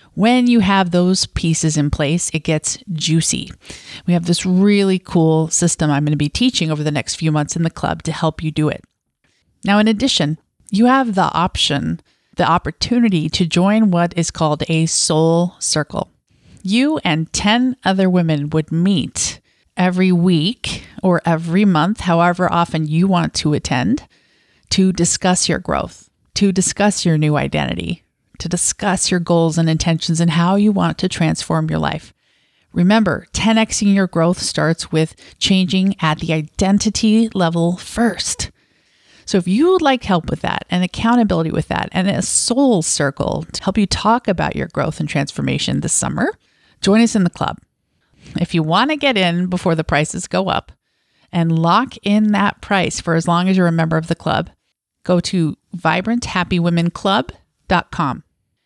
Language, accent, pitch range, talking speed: English, American, 160-200 Hz, 165 wpm